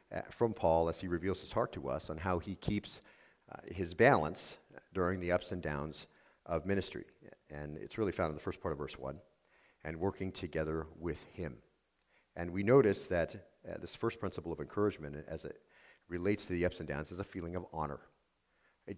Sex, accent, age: male, American, 40-59